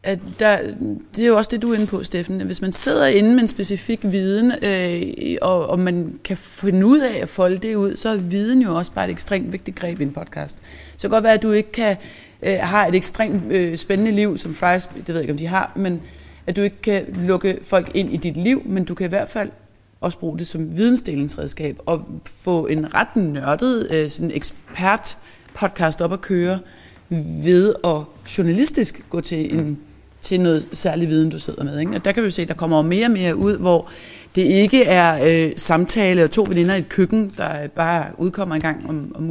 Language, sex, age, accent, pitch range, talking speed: Danish, female, 30-49, native, 165-210 Hz, 225 wpm